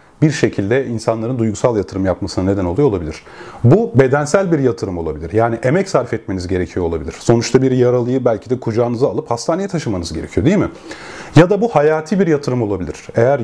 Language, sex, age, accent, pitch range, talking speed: Turkish, male, 30-49, native, 115-155 Hz, 180 wpm